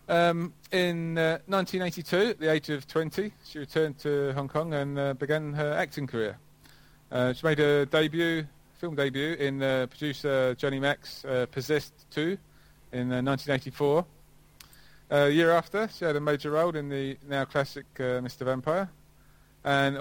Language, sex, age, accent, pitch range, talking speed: English, male, 30-49, British, 130-155 Hz, 165 wpm